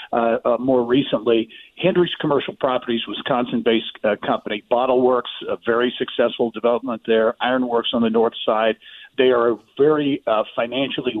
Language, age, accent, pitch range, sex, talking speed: English, 50-69, American, 115-135 Hz, male, 140 wpm